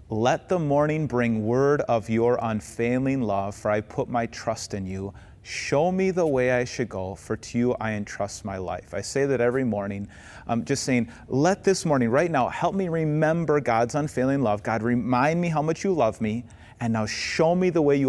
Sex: male